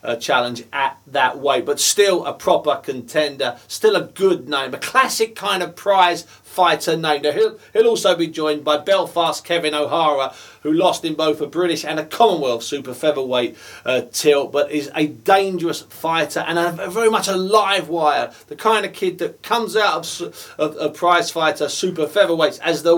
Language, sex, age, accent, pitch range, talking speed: English, male, 40-59, British, 150-190 Hz, 190 wpm